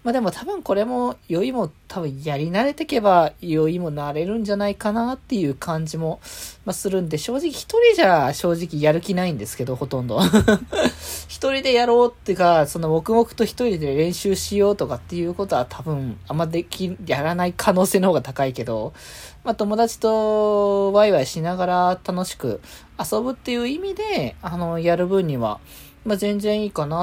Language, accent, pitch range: Japanese, native, 145-205 Hz